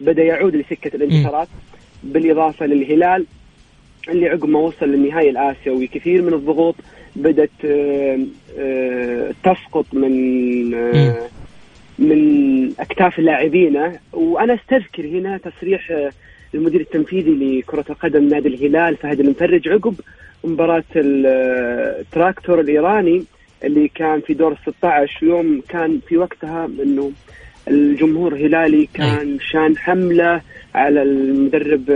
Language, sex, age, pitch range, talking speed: Arabic, male, 30-49, 140-170 Hz, 100 wpm